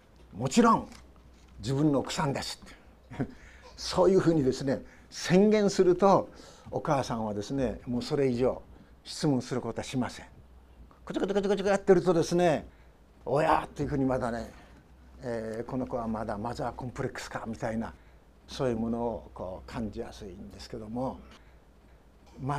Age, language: 60-79, Japanese